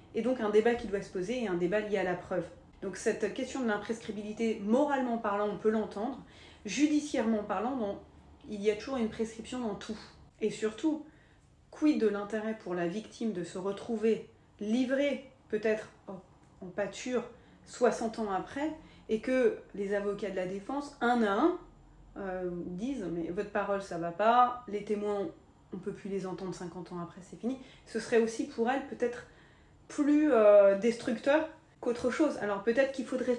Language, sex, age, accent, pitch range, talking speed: French, female, 30-49, French, 200-245 Hz, 180 wpm